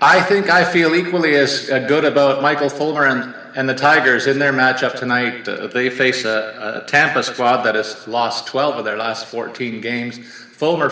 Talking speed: 190 wpm